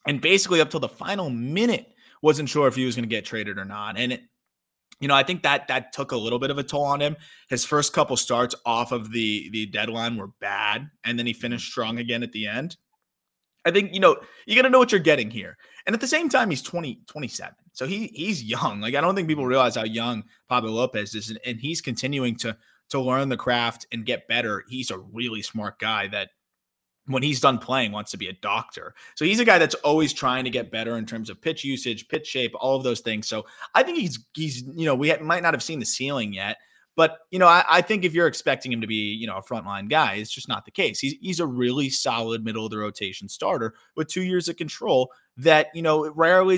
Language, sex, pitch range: English, male, 115-155 Hz